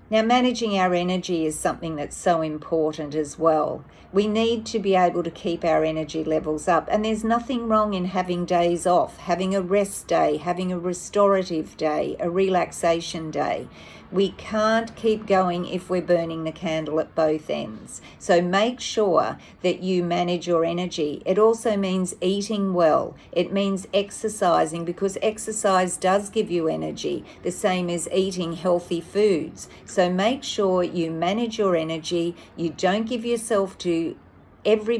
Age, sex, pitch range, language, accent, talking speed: 50-69, female, 165-200 Hz, English, Australian, 160 wpm